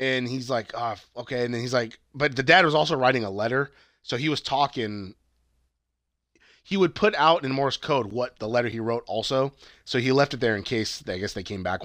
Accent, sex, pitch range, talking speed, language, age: American, male, 110-135 Hz, 230 wpm, English, 20-39